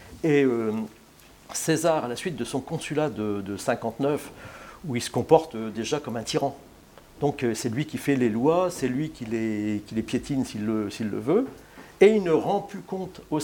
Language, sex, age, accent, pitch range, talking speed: French, male, 60-79, French, 115-160 Hz, 215 wpm